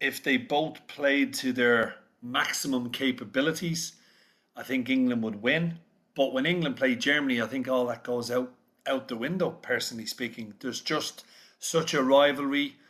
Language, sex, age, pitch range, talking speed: English, male, 40-59, 135-165 Hz, 160 wpm